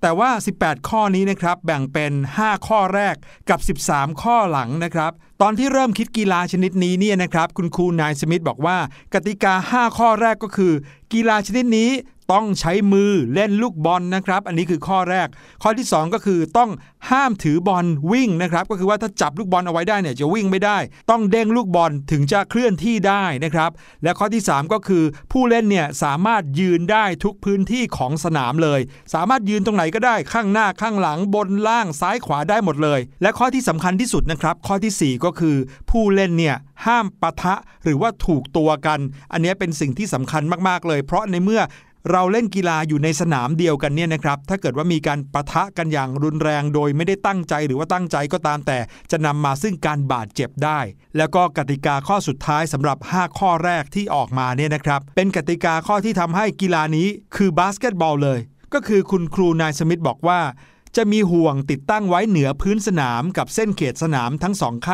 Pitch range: 155-205 Hz